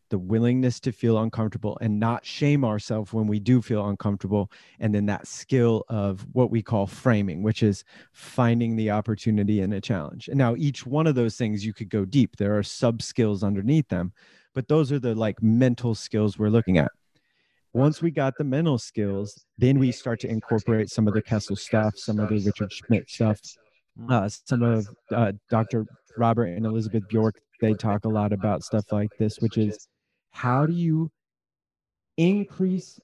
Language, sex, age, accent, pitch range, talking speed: English, male, 30-49, American, 105-130 Hz, 185 wpm